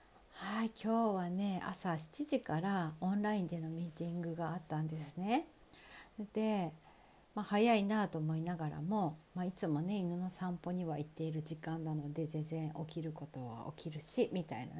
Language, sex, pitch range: Japanese, female, 160-210 Hz